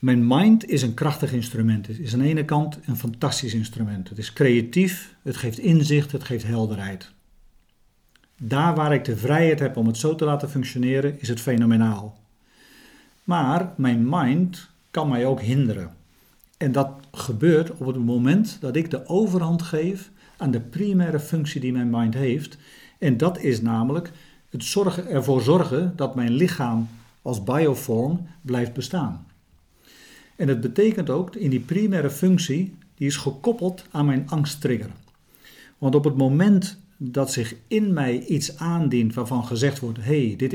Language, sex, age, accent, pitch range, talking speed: Dutch, male, 50-69, Dutch, 120-165 Hz, 160 wpm